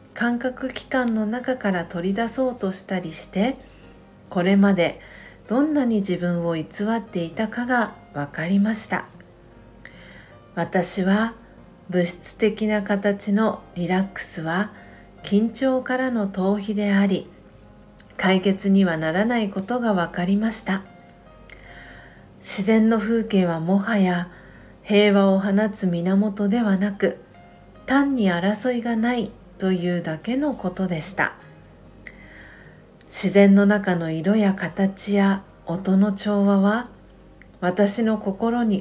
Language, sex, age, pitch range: Japanese, female, 50-69, 185-220 Hz